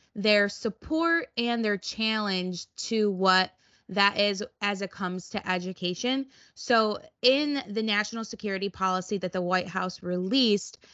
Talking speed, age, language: 135 wpm, 20-39, English